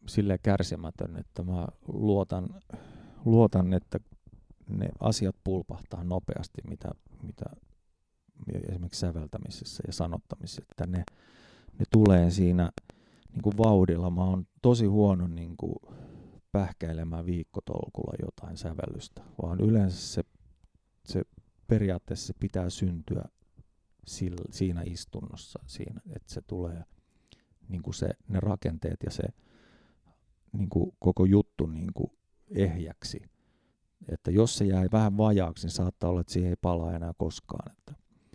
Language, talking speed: Finnish, 120 wpm